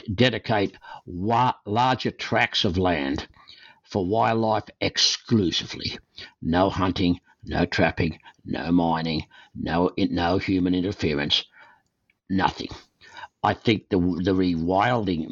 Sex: male